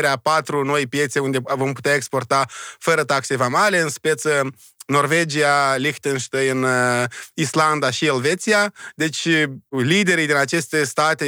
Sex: male